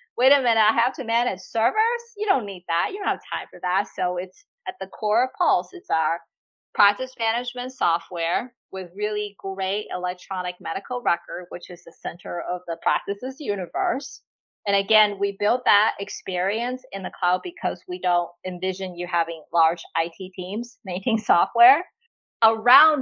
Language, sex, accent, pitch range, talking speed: English, female, American, 180-230 Hz, 170 wpm